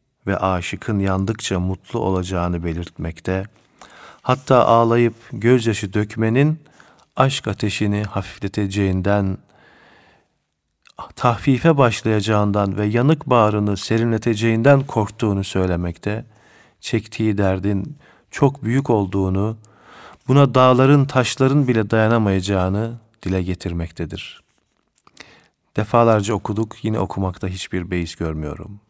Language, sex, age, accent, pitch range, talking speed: Turkish, male, 40-59, native, 95-115 Hz, 85 wpm